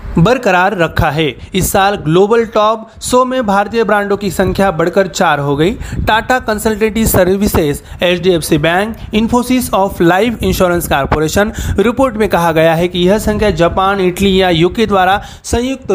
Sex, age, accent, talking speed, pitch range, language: male, 30-49, native, 155 wpm, 175-220 Hz, Marathi